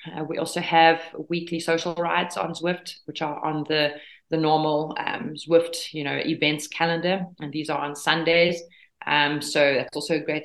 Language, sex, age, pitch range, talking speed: English, female, 30-49, 150-170 Hz, 185 wpm